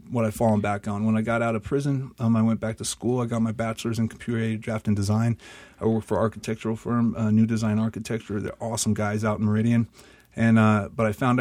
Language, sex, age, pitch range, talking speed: English, male, 30-49, 105-115 Hz, 250 wpm